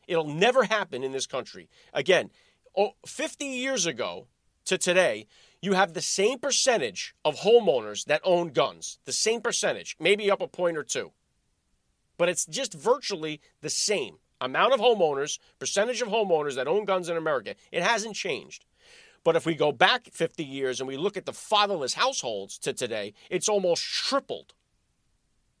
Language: English